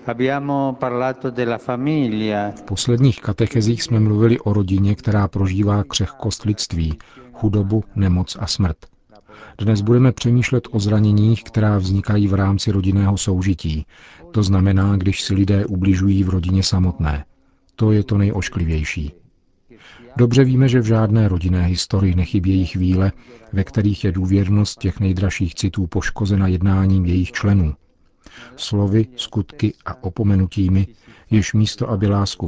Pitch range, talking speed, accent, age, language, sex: 95-110 Hz, 125 wpm, native, 50-69, Czech, male